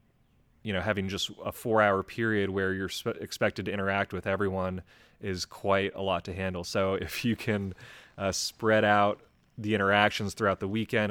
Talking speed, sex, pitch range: 180 wpm, male, 95-110 Hz